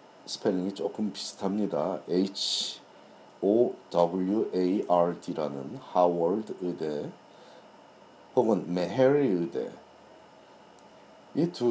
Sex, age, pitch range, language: male, 40-59, 85-110 Hz, Korean